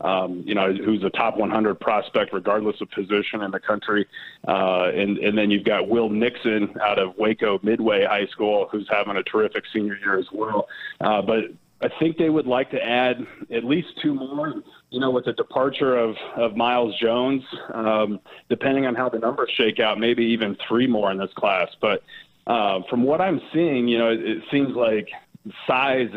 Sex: male